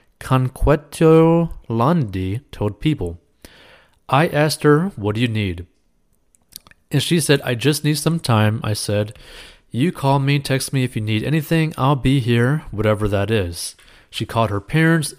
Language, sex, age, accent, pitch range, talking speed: English, male, 30-49, American, 105-135 Hz, 160 wpm